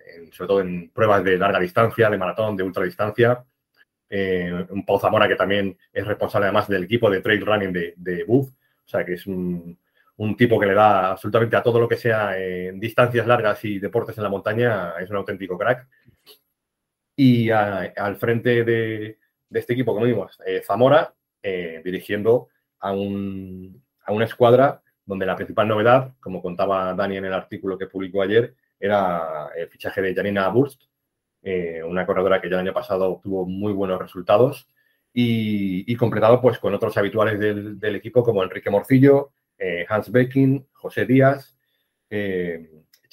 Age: 30-49